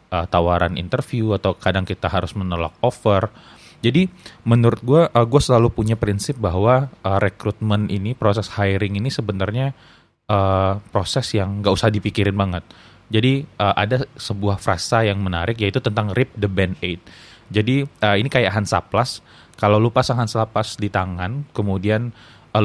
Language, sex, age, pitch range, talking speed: Indonesian, male, 20-39, 95-115 Hz, 150 wpm